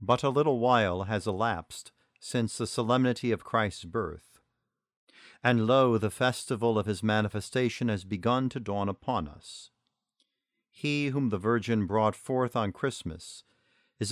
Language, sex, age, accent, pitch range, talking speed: English, male, 50-69, American, 105-125 Hz, 145 wpm